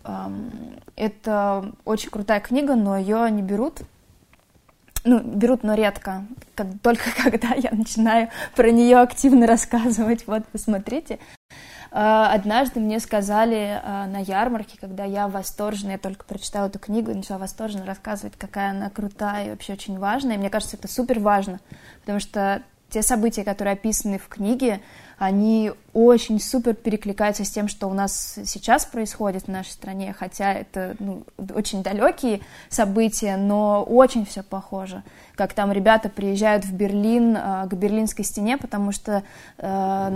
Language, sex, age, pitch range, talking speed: Russian, female, 20-39, 200-225 Hz, 140 wpm